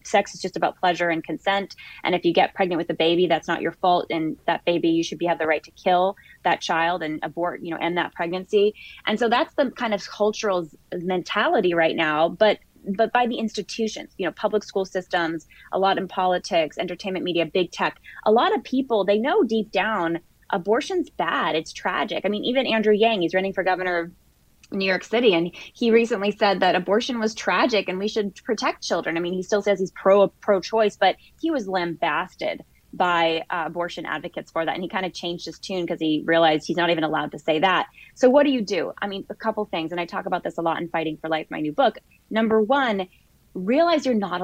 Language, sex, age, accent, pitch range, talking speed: English, female, 20-39, American, 170-215 Hz, 230 wpm